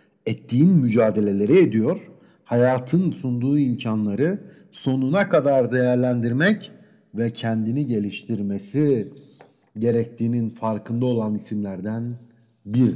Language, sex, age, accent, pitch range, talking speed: Turkish, male, 50-69, native, 115-160 Hz, 80 wpm